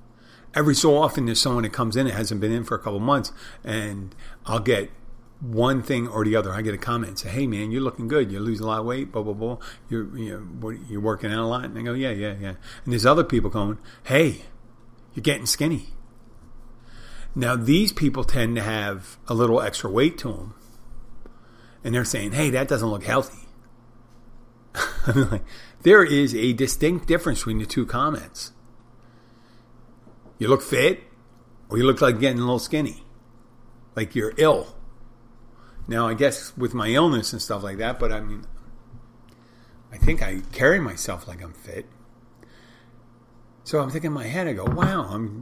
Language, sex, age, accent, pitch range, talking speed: English, male, 40-59, American, 115-125 Hz, 185 wpm